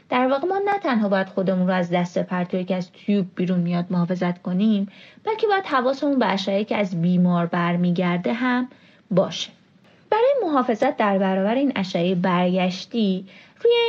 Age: 30-49